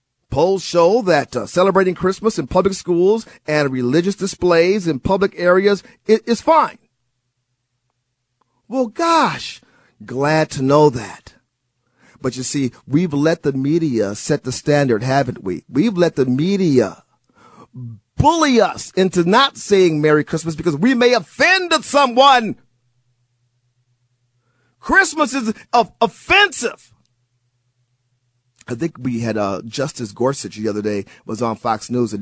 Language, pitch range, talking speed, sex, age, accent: English, 125-200 Hz, 130 wpm, male, 40-59, American